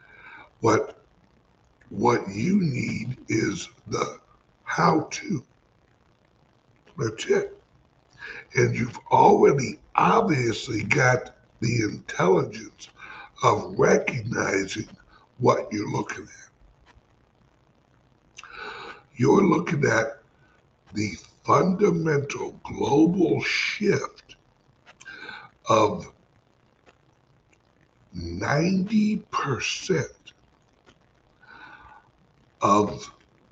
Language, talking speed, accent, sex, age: English, 55 wpm, American, male, 60-79